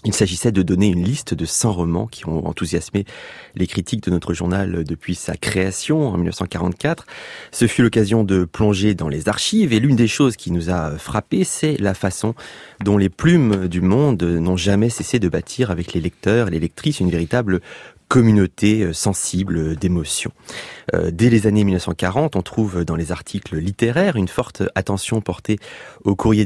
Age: 30-49